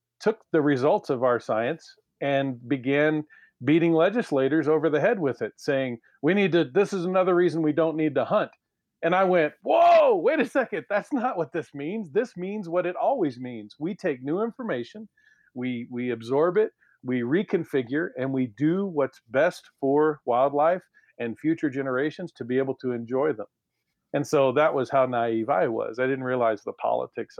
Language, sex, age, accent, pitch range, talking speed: English, male, 40-59, American, 120-160 Hz, 185 wpm